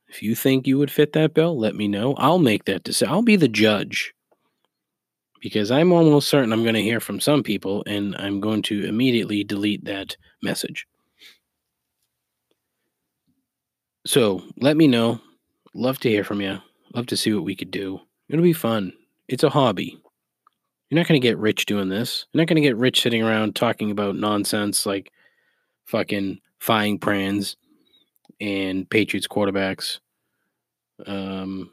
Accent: American